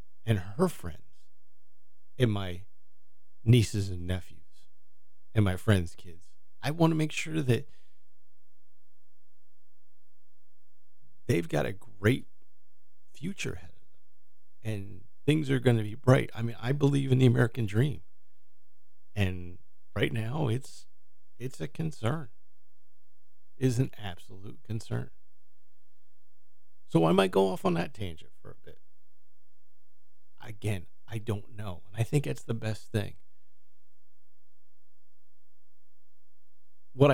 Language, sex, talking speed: English, male, 125 wpm